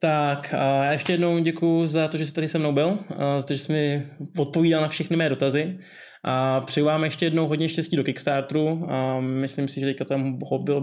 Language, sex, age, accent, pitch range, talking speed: Czech, male, 20-39, native, 140-165 Hz, 210 wpm